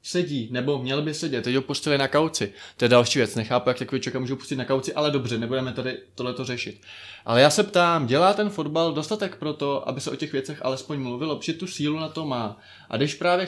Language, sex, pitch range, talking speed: Czech, male, 115-140 Hz, 240 wpm